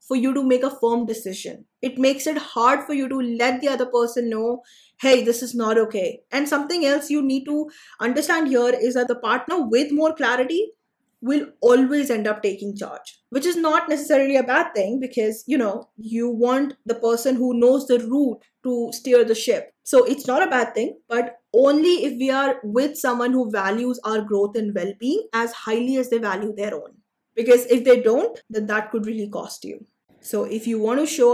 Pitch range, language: 225-265 Hz, English